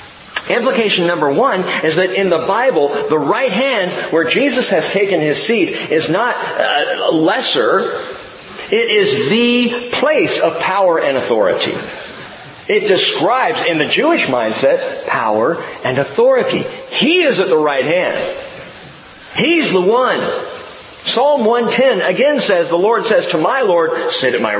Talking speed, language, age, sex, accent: 145 wpm, English, 40-59, male, American